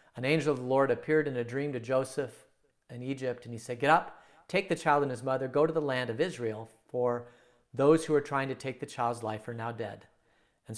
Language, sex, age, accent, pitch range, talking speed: English, male, 40-59, American, 115-145 Hz, 245 wpm